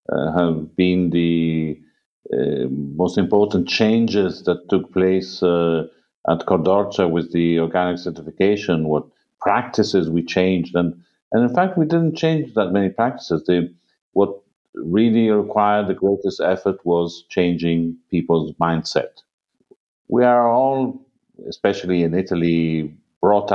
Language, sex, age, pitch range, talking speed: English, male, 50-69, 80-95 Hz, 125 wpm